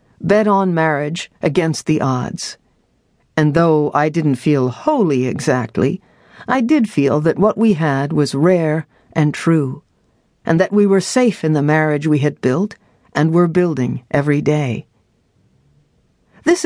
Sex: female